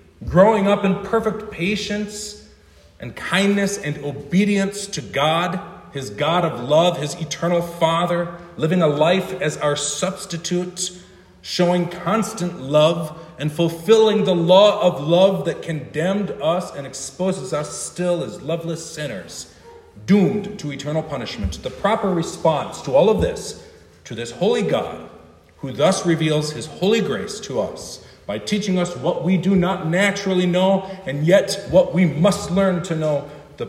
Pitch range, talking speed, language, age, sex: 120-185 Hz, 150 wpm, English, 40-59, male